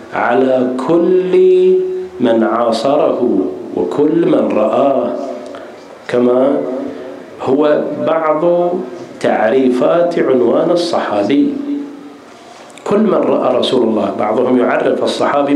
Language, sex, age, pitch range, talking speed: Arabic, male, 50-69, 145-180 Hz, 80 wpm